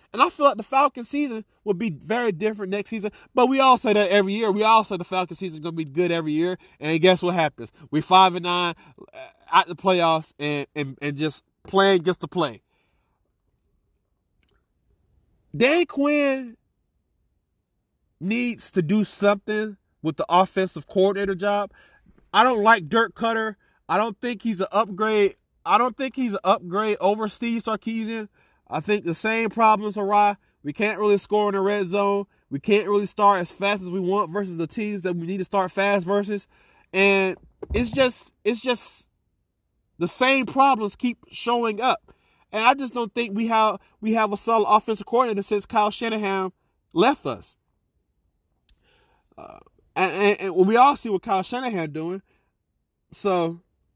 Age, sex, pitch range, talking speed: 30-49, male, 180-225 Hz, 175 wpm